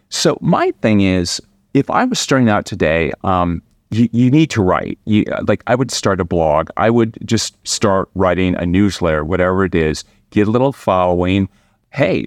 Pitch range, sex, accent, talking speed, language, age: 85-115 Hz, male, American, 185 wpm, English, 30-49